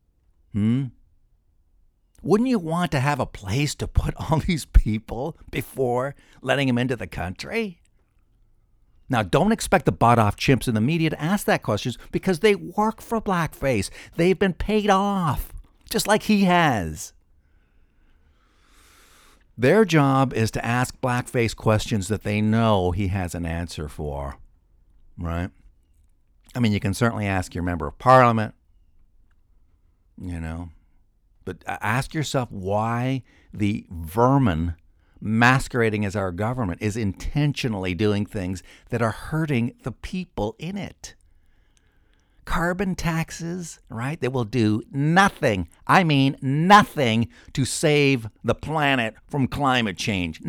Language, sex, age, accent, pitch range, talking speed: English, male, 60-79, American, 85-140 Hz, 135 wpm